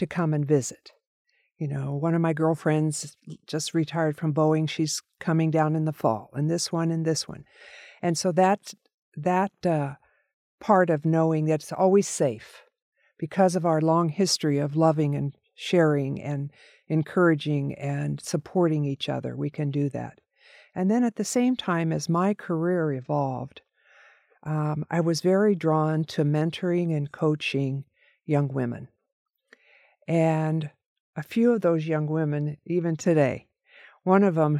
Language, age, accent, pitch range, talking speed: English, 50-69, American, 150-185 Hz, 155 wpm